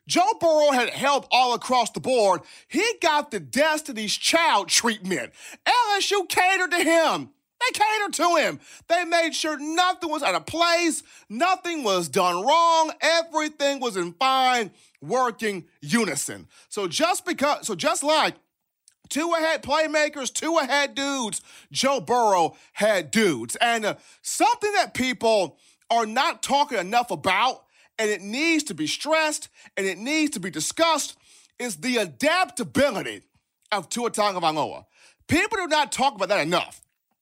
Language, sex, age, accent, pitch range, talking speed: English, male, 40-59, American, 215-320 Hz, 145 wpm